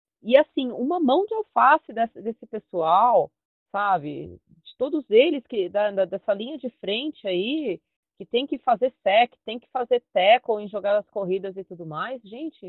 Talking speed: 160 wpm